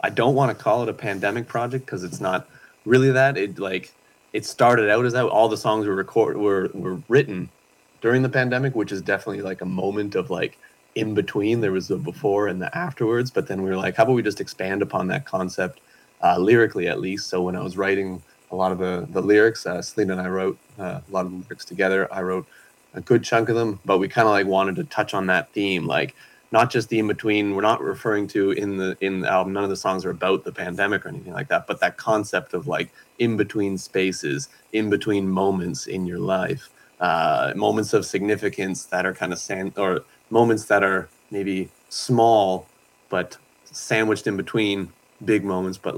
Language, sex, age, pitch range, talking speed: English, male, 20-39, 95-110 Hz, 220 wpm